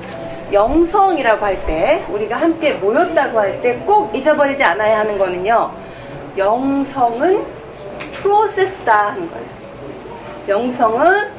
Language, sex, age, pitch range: Korean, female, 40-59, 265-375 Hz